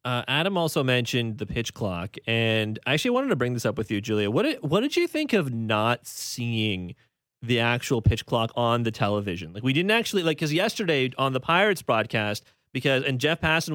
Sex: male